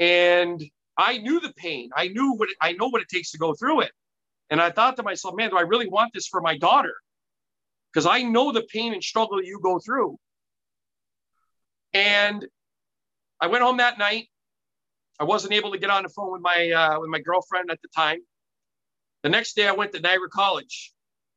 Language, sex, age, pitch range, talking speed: English, male, 40-59, 165-220 Hz, 200 wpm